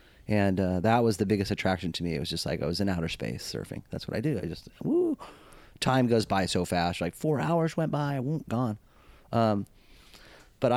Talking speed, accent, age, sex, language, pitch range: 230 wpm, American, 30-49, male, English, 90-120 Hz